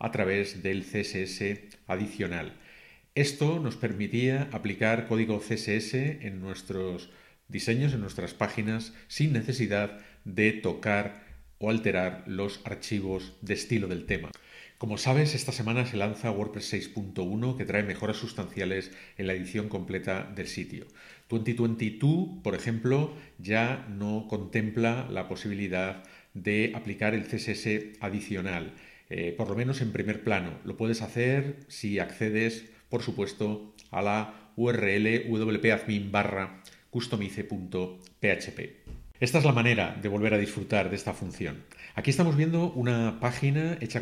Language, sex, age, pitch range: Spanish, male, 40-59, 100-120 Hz